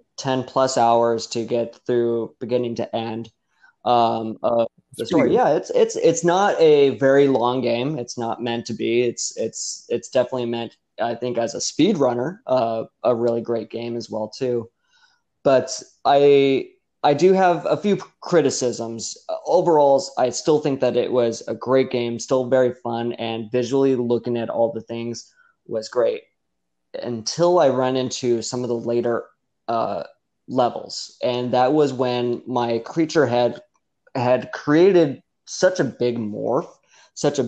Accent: American